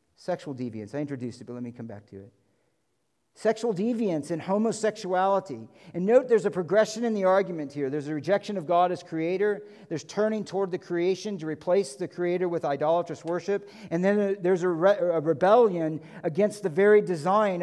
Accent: American